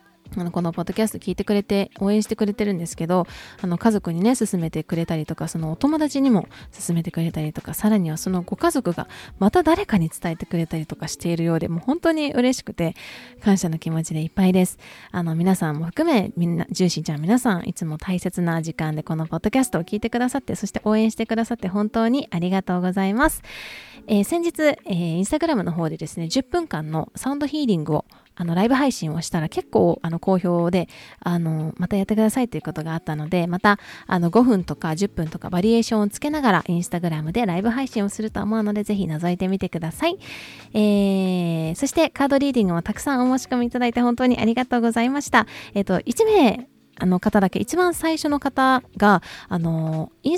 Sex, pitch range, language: female, 170-240 Hz, Japanese